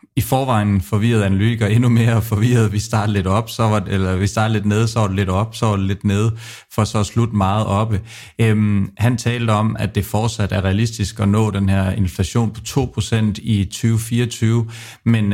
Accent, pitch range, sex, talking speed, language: native, 100-115 Hz, male, 205 wpm, Danish